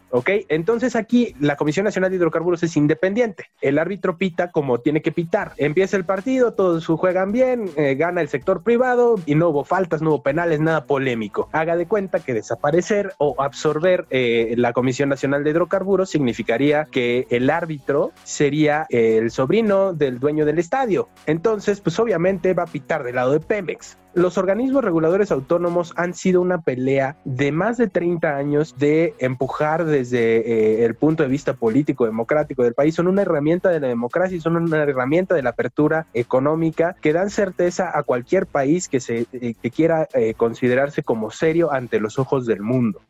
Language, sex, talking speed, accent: Spanish, male, 180 wpm, Mexican